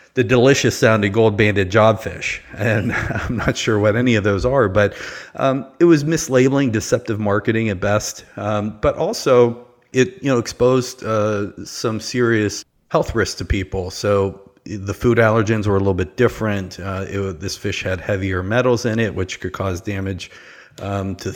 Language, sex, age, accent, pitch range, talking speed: English, male, 30-49, American, 95-110 Hz, 175 wpm